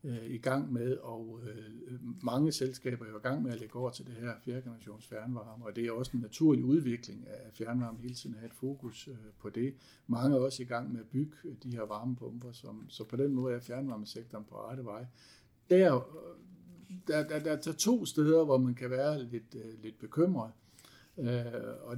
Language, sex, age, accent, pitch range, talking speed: Danish, male, 60-79, native, 120-140 Hz, 190 wpm